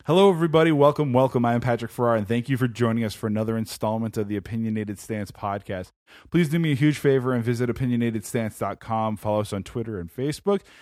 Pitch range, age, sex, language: 105-130 Hz, 20-39, male, English